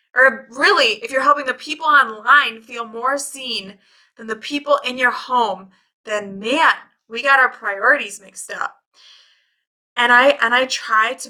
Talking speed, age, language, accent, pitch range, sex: 165 wpm, 20-39, English, American, 210-260 Hz, female